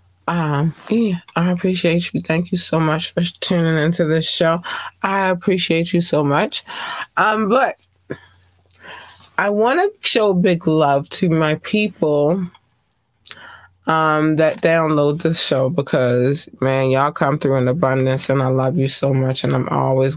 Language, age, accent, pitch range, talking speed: English, 20-39, American, 135-175 Hz, 155 wpm